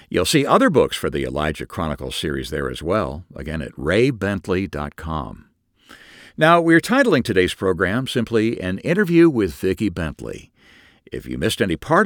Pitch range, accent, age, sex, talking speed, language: 80-120 Hz, American, 60-79, male, 155 wpm, English